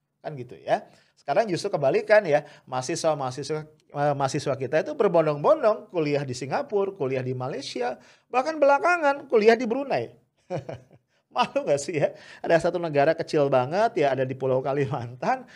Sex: male